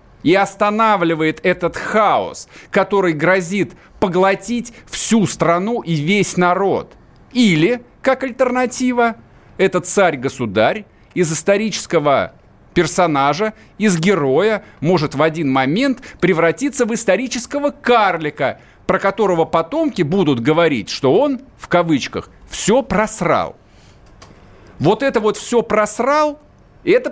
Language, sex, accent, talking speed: Russian, male, native, 105 wpm